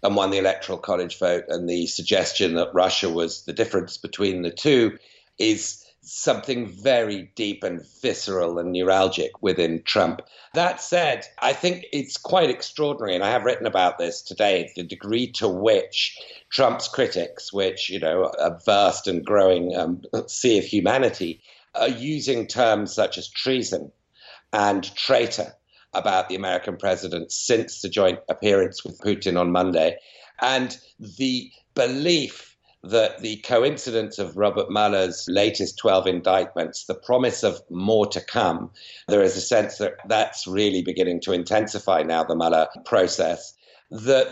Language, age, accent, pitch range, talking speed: English, 50-69, British, 90-125 Hz, 150 wpm